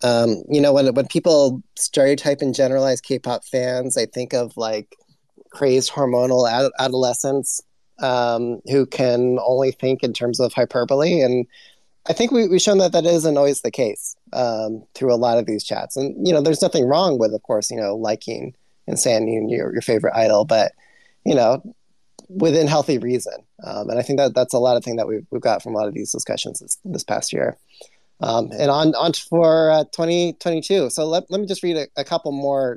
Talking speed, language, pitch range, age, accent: 205 wpm, English, 125-170 Hz, 20-39, American